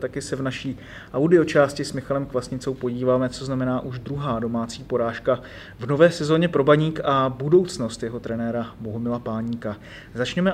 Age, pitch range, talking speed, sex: 30-49, 130-145 Hz, 155 wpm, male